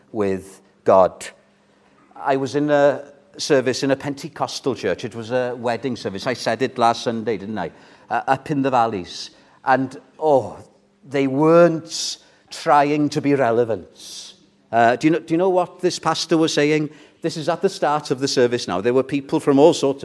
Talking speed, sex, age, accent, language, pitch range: 190 wpm, male, 50-69, British, English, 135-195 Hz